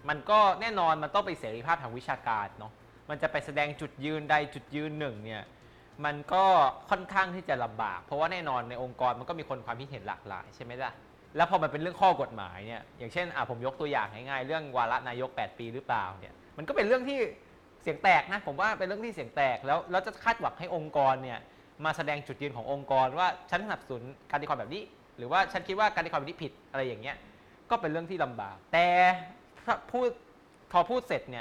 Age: 20-39